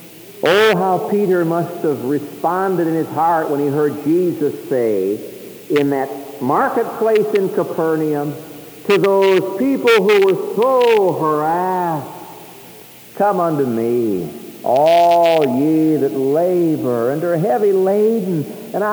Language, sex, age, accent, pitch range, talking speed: English, male, 60-79, American, 125-210 Hz, 120 wpm